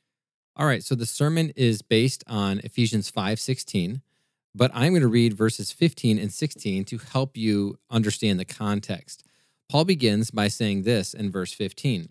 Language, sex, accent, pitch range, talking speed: English, male, American, 105-130 Hz, 170 wpm